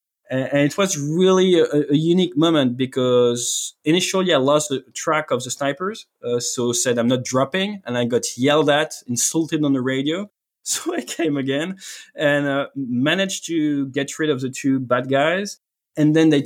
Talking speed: 180 wpm